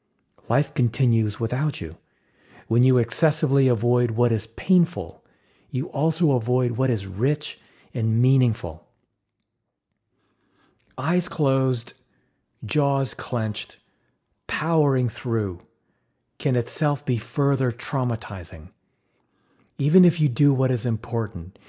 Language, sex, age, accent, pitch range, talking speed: English, male, 50-69, American, 115-150 Hz, 100 wpm